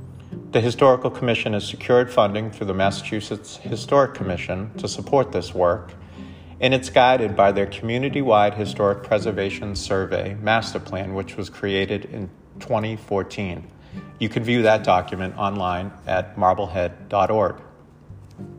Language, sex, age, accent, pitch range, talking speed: English, male, 40-59, American, 95-115 Hz, 125 wpm